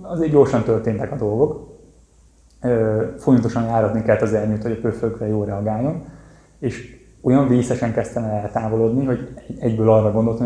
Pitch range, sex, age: 105-120 Hz, male, 20-39